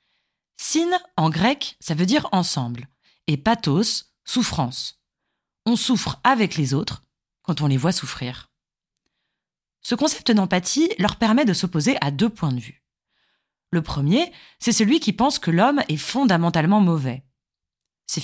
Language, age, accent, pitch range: French, 30-49, French, 150-230 Hz